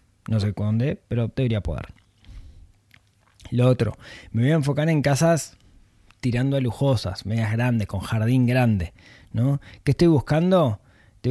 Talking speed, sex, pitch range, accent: 145 wpm, male, 105-140 Hz, Argentinian